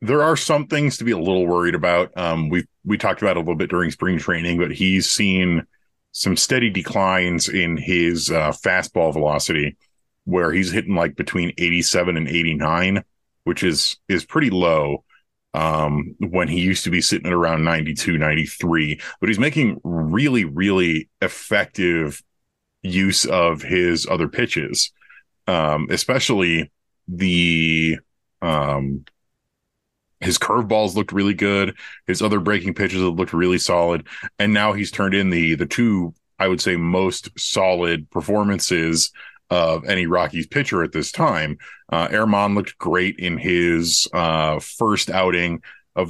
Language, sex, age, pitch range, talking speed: English, male, 30-49, 80-95 Hz, 150 wpm